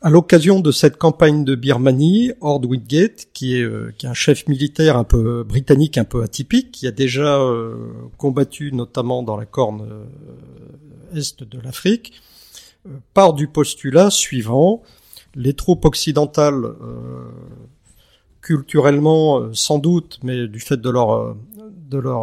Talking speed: 145 wpm